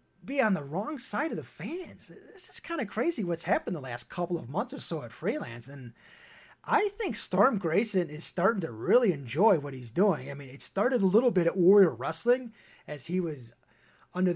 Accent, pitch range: American, 160-250 Hz